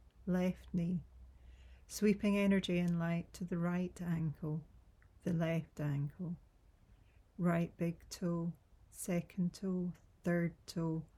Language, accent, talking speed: English, British, 105 wpm